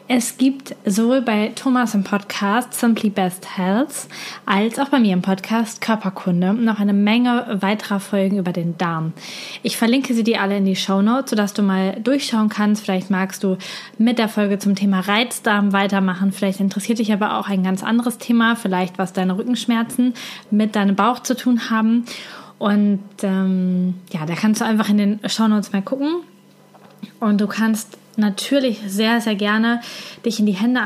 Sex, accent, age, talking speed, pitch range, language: female, German, 20-39, 175 wpm, 195-230 Hz, German